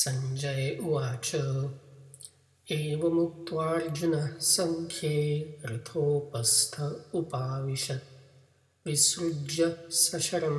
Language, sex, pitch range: English, male, 115-145 Hz